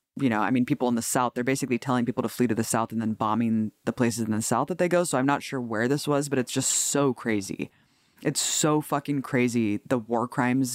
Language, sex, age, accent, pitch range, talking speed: English, female, 20-39, American, 120-145 Hz, 260 wpm